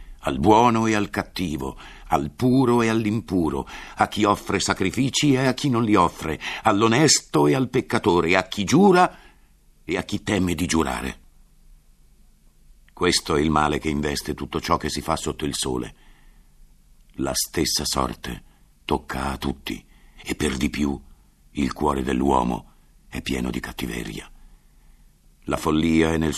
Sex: male